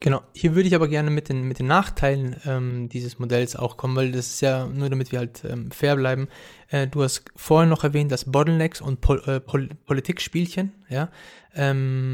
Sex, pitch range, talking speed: male, 130-160 Hz, 210 wpm